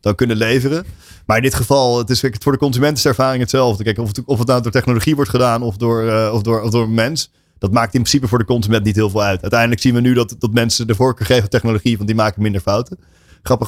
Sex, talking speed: male, 285 wpm